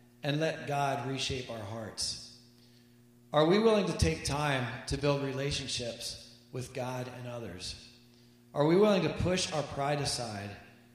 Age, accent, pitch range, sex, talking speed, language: 40-59, American, 120-145 Hz, male, 150 wpm, English